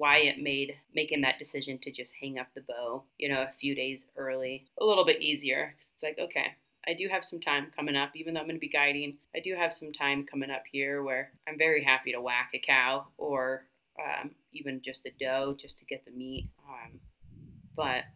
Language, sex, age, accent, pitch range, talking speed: English, female, 30-49, American, 135-155 Hz, 225 wpm